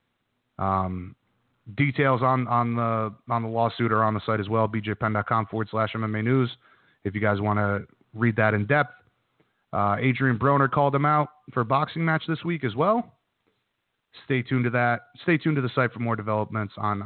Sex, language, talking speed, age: male, English, 195 wpm, 30-49